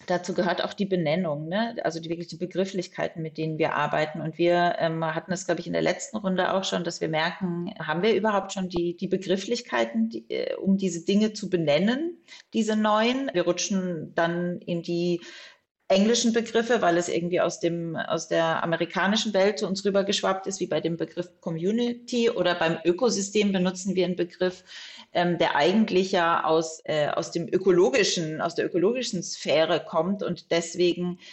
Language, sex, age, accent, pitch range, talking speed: German, female, 30-49, German, 165-195 Hz, 175 wpm